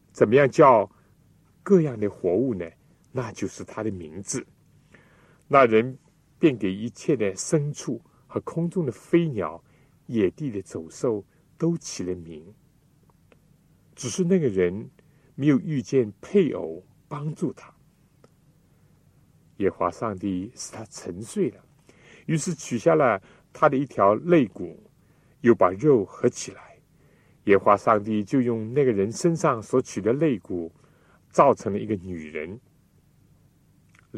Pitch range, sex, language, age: 105-160 Hz, male, Chinese, 60-79